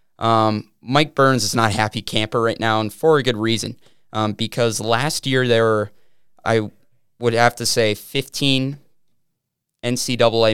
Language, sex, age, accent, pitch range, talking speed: English, male, 20-39, American, 105-120 Hz, 160 wpm